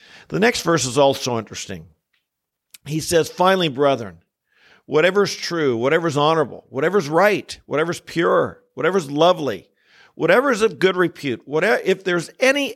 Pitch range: 130-170 Hz